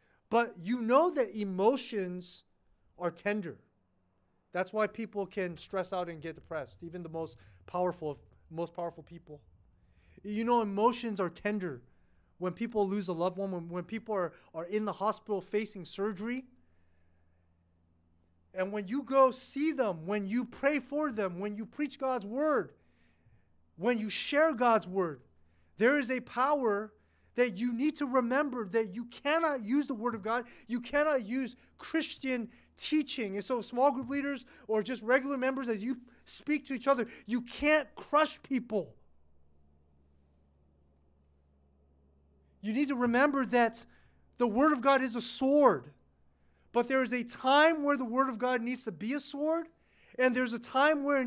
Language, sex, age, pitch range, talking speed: English, male, 30-49, 170-260 Hz, 165 wpm